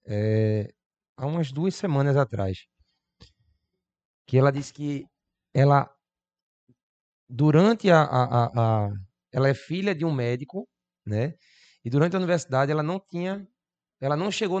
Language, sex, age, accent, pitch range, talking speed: Portuguese, male, 20-39, Brazilian, 120-160 Hz, 135 wpm